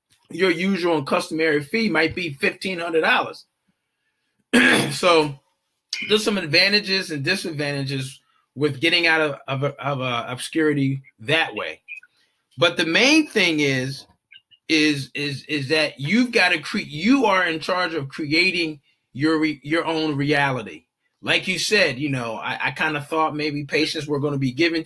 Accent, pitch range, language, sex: American, 145-185 Hz, English, male